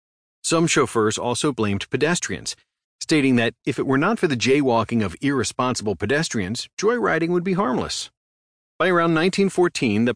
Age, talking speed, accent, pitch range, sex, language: 40-59, 150 wpm, American, 105-135 Hz, male, English